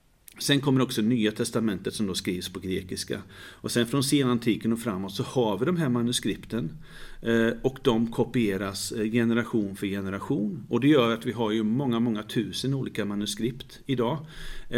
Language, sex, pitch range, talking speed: Swedish, male, 110-130 Hz, 165 wpm